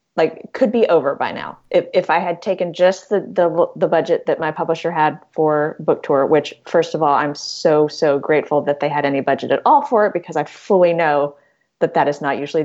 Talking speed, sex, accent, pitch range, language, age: 235 wpm, female, American, 145-185 Hz, English, 30-49